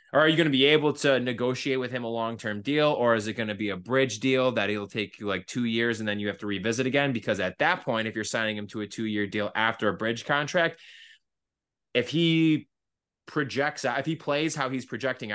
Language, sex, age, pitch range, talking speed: English, male, 20-39, 105-145 Hz, 240 wpm